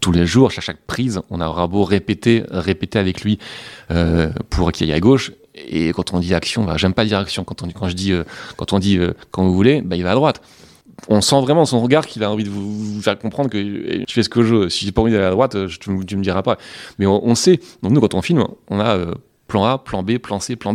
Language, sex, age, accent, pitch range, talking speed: French, male, 30-49, French, 95-120 Hz, 290 wpm